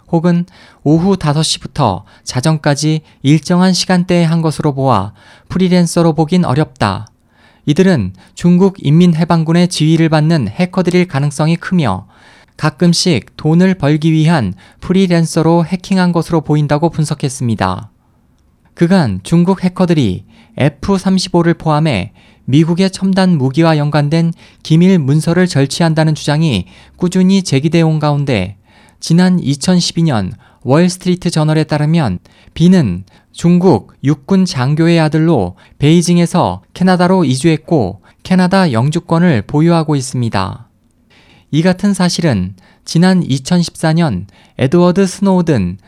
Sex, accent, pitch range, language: male, native, 130-180 Hz, Korean